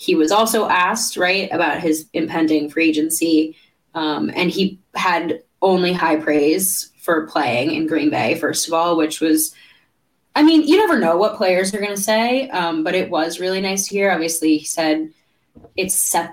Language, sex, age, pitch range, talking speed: English, female, 20-39, 155-205 Hz, 185 wpm